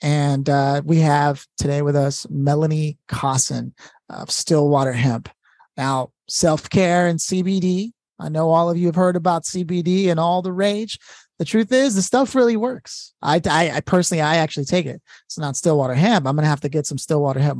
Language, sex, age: English, male, 30-49